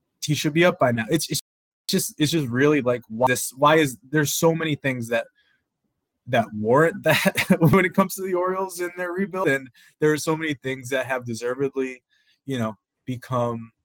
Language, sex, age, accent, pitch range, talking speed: English, male, 20-39, American, 120-160 Hz, 200 wpm